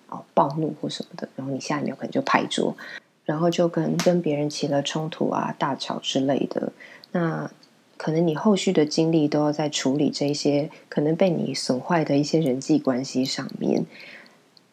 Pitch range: 150-205 Hz